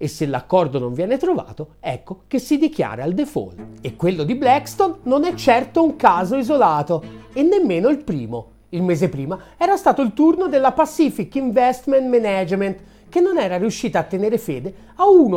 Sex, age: male, 40-59